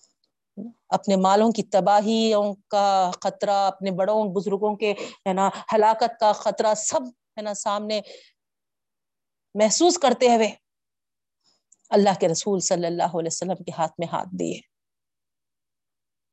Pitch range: 190-230 Hz